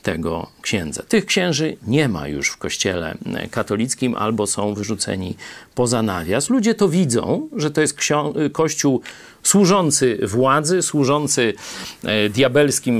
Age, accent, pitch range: 40-59, native, 120-170 Hz